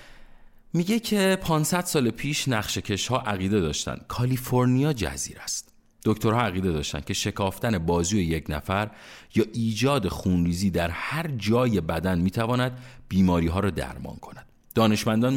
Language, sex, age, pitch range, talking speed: Persian, male, 40-59, 90-125 Hz, 125 wpm